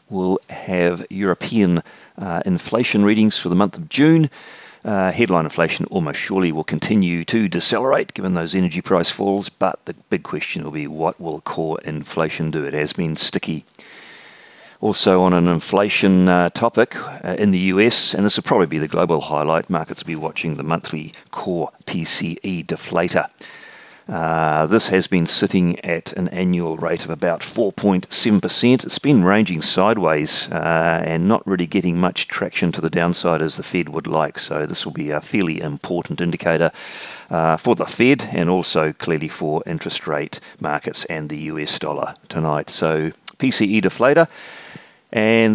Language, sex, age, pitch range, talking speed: English, male, 40-59, 80-100 Hz, 165 wpm